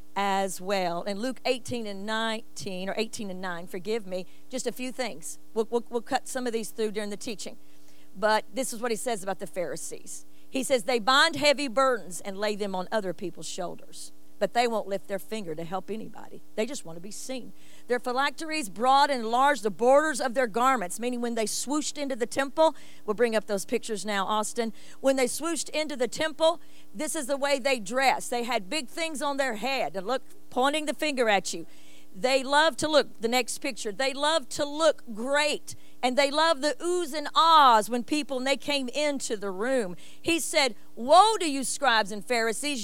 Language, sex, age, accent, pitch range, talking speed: English, female, 50-69, American, 215-295 Hz, 205 wpm